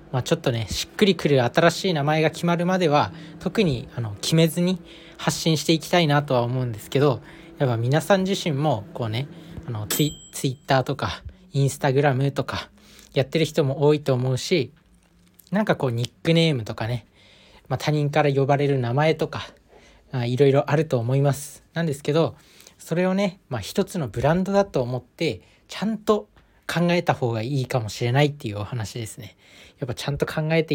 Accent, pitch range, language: native, 120-160 Hz, Japanese